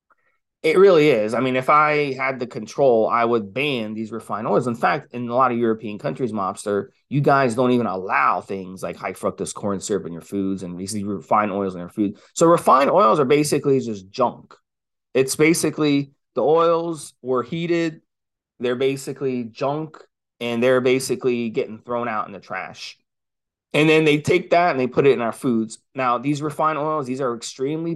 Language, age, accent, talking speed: English, 20-39, American, 195 wpm